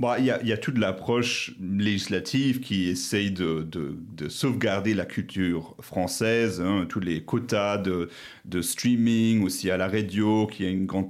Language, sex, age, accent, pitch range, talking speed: French, male, 40-59, French, 95-125 Hz, 180 wpm